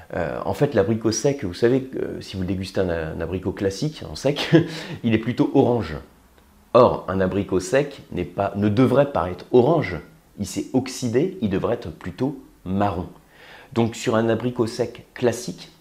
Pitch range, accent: 95-125 Hz, French